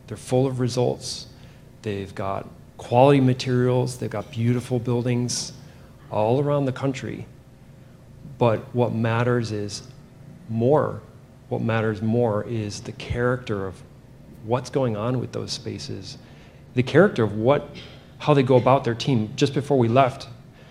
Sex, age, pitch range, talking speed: male, 40-59, 115-135 Hz, 140 wpm